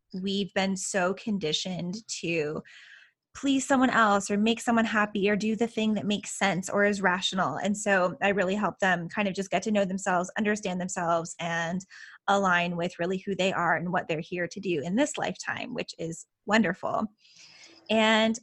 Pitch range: 190-230 Hz